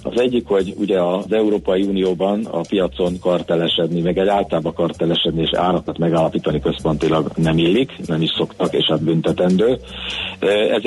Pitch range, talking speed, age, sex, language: 80-100 Hz, 155 wpm, 60-79, male, Hungarian